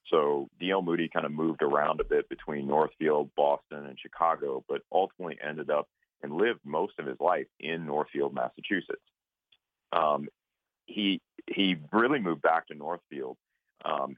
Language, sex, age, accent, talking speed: English, male, 40-59, American, 150 wpm